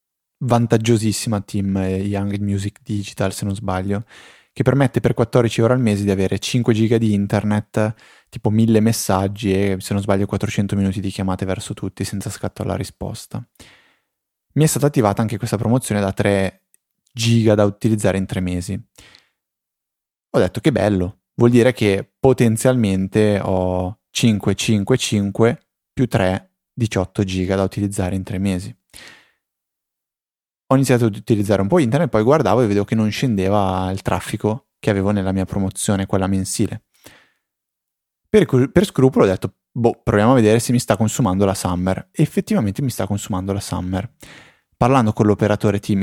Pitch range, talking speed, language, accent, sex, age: 95-115 Hz, 165 wpm, Italian, native, male, 20-39